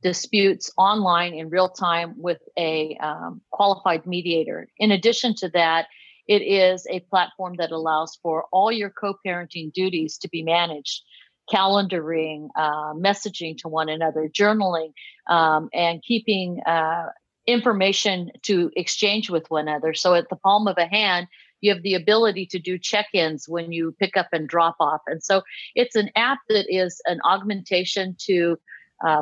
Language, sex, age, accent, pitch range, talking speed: English, female, 50-69, American, 165-205 Hz, 160 wpm